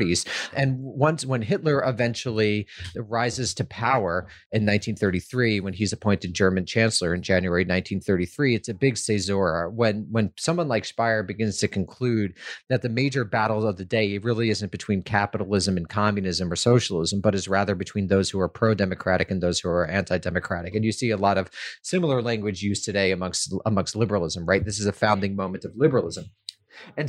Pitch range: 100-120 Hz